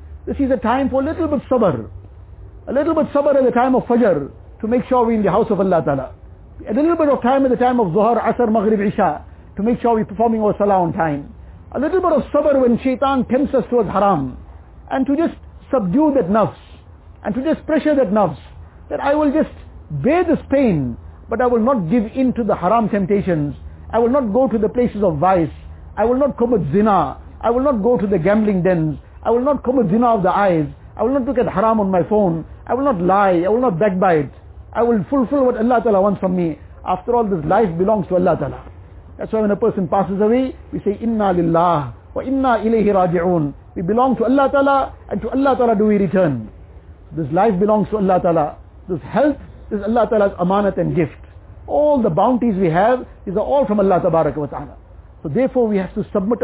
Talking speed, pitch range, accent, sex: 215 wpm, 175-245 Hz, Indian, male